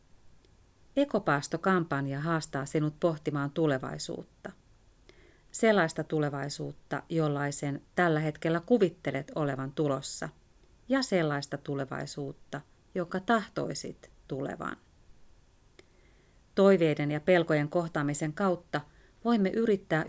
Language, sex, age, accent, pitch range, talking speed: Finnish, female, 30-49, native, 135-180 Hz, 80 wpm